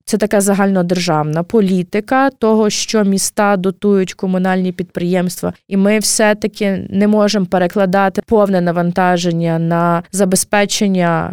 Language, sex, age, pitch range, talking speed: Ukrainian, female, 20-39, 185-210 Hz, 105 wpm